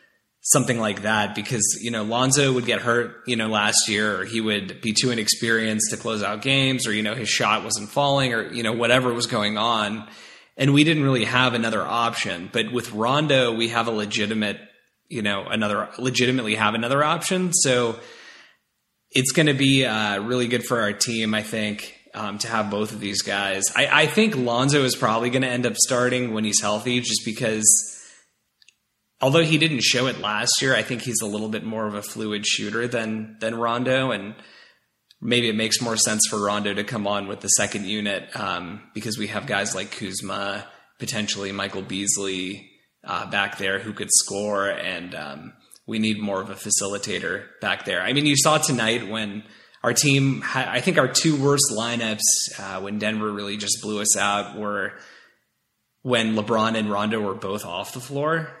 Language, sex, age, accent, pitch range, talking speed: English, male, 20-39, American, 105-125 Hz, 190 wpm